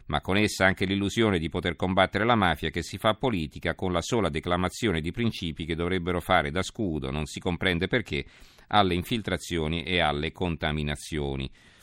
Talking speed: 170 wpm